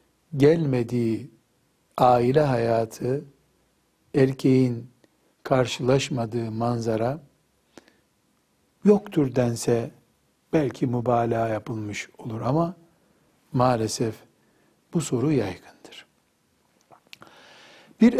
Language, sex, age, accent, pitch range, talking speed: Turkish, male, 60-79, native, 115-160 Hz, 60 wpm